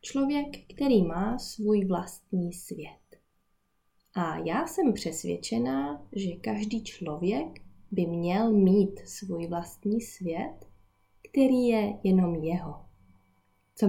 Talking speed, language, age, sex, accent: 105 wpm, Czech, 20-39, female, native